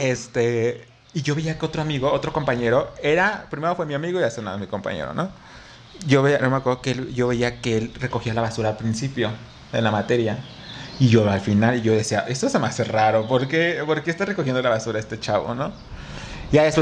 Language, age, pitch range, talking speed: Spanish, 30-49, 115-160 Hz, 230 wpm